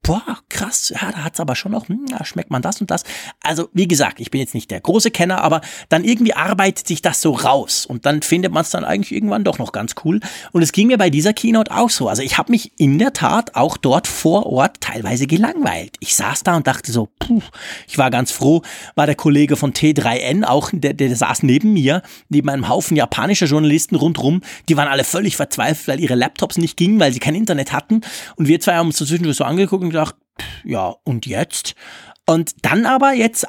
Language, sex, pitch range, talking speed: German, male, 135-190 Hz, 230 wpm